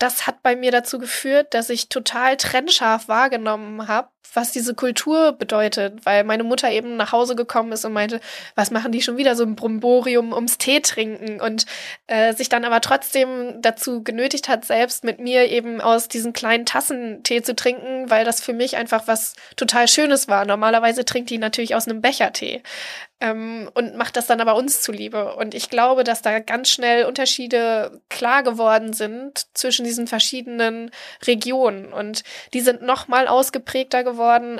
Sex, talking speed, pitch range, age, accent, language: female, 180 wpm, 225-255 Hz, 20-39, German, German